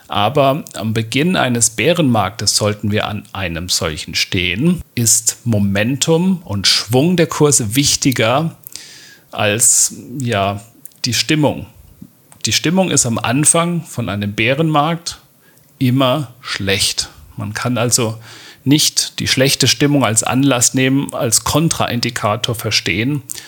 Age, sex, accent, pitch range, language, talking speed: 40-59, male, German, 110-135 Hz, German, 115 wpm